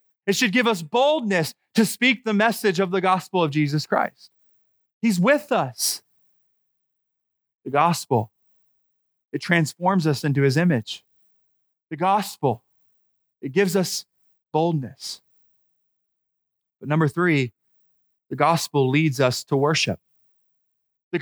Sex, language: male, English